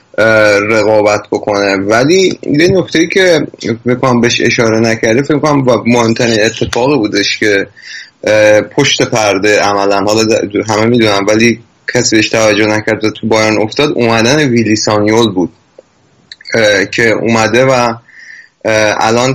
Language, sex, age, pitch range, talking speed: Persian, male, 30-49, 105-120 Hz, 110 wpm